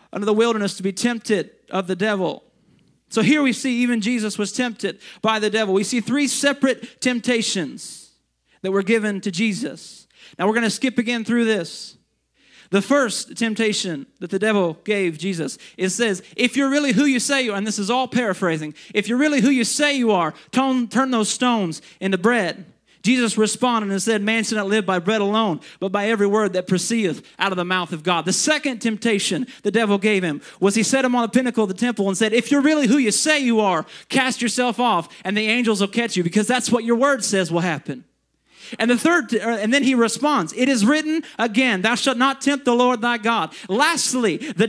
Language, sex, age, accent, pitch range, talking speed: English, male, 30-49, American, 205-255 Hz, 220 wpm